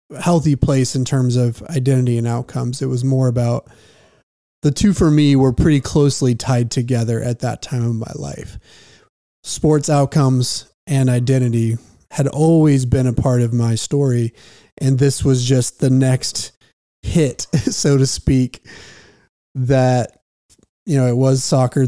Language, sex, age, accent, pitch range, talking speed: English, male, 30-49, American, 125-140 Hz, 150 wpm